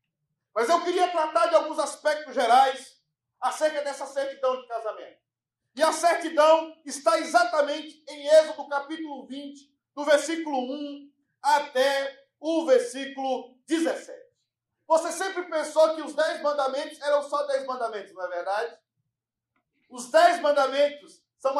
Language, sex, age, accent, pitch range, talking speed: Portuguese, male, 40-59, Brazilian, 265-315 Hz, 130 wpm